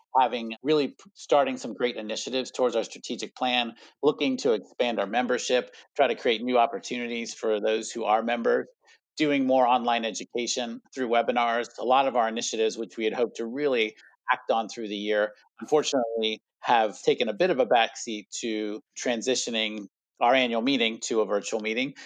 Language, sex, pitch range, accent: English, male, 110-135 Hz, American